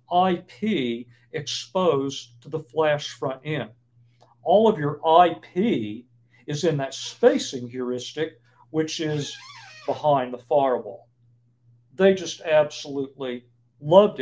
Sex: male